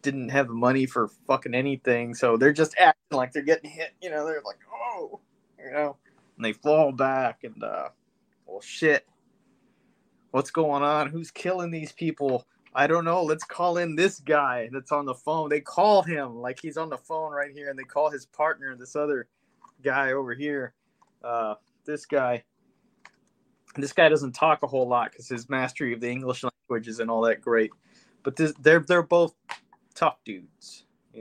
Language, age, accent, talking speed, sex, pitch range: English, 20-39, American, 190 wpm, male, 115-150 Hz